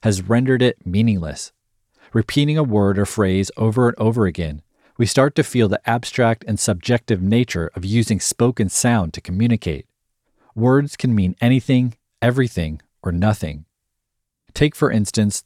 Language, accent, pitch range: English, American, 95-125 Hz